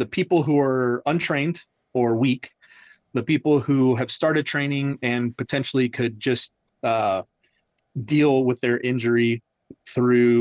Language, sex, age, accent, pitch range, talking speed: English, male, 30-49, American, 110-130 Hz, 135 wpm